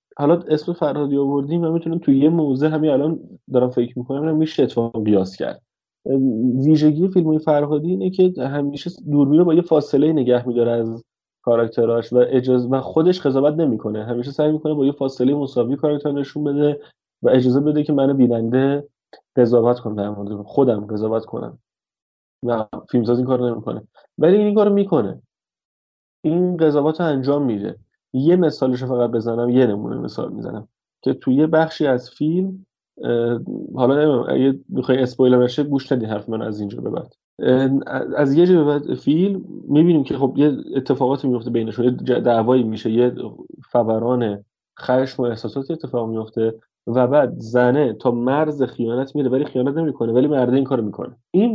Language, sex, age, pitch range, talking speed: Persian, male, 30-49, 120-150 Hz, 160 wpm